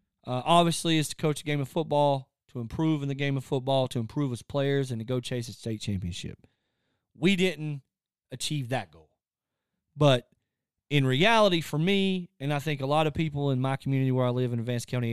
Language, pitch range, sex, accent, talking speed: English, 125-155 Hz, male, American, 215 wpm